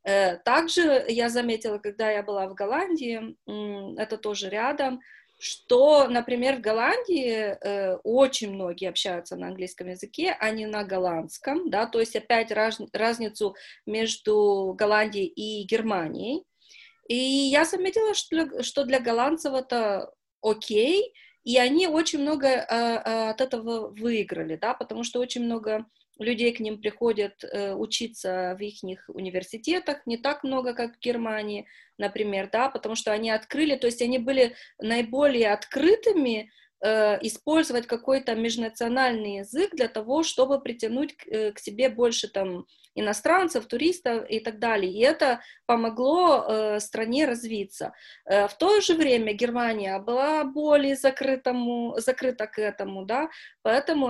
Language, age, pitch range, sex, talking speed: Romanian, 30-49, 215-275 Hz, female, 130 wpm